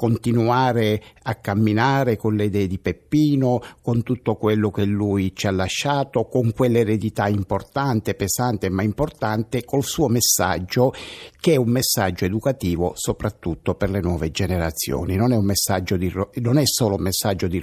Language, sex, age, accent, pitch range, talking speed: Italian, male, 60-79, native, 100-130 Hz, 155 wpm